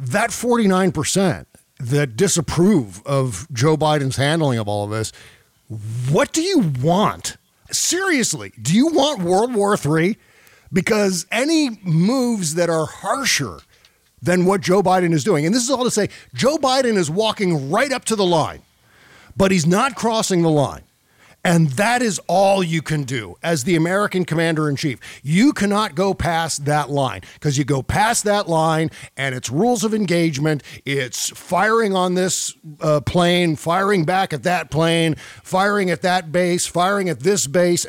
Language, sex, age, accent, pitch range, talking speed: English, male, 50-69, American, 145-195 Hz, 165 wpm